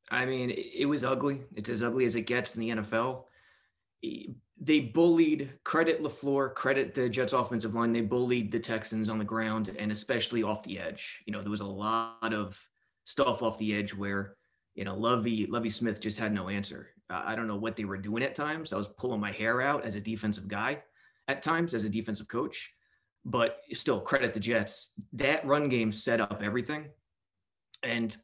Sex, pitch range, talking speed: male, 105-130 Hz, 200 wpm